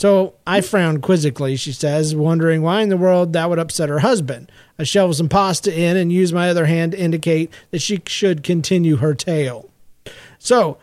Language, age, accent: English, 40-59, American